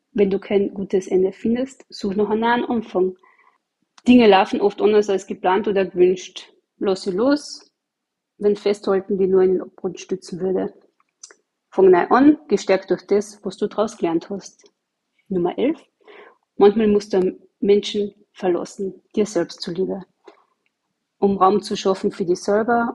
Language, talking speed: German, 155 wpm